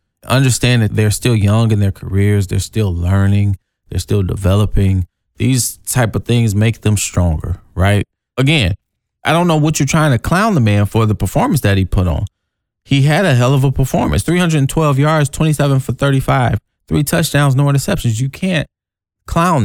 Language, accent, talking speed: English, American, 180 wpm